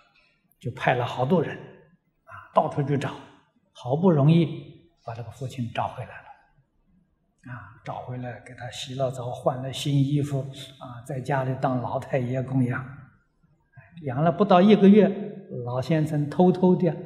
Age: 60-79